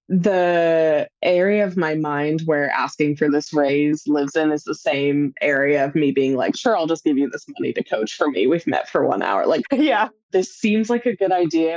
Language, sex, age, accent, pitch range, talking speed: English, female, 20-39, American, 150-180 Hz, 225 wpm